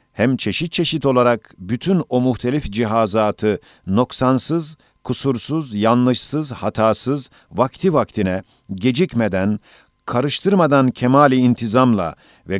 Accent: native